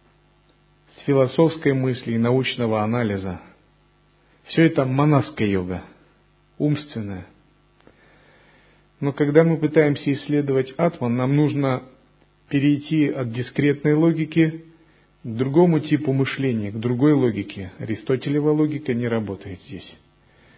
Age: 40-59